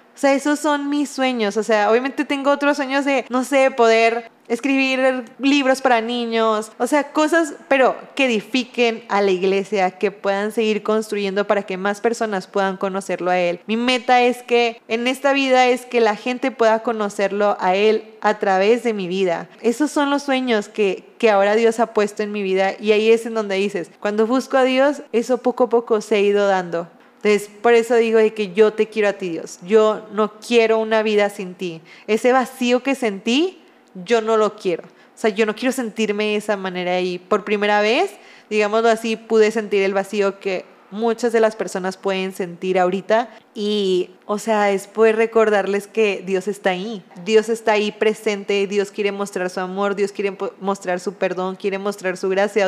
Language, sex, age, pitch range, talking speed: Spanish, female, 20-39, 200-240 Hz, 195 wpm